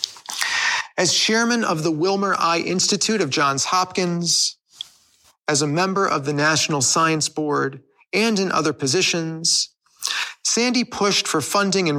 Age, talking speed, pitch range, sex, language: 40-59, 135 wpm, 150-195 Hz, male, English